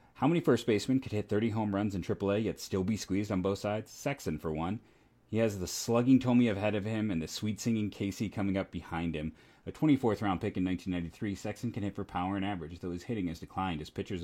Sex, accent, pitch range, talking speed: male, American, 85-105 Hz, 235 wpm